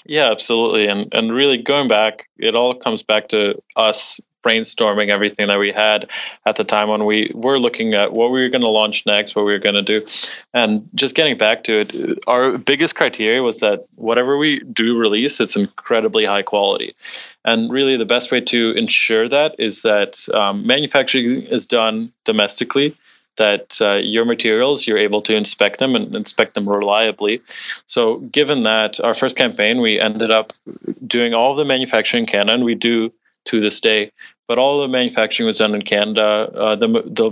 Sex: male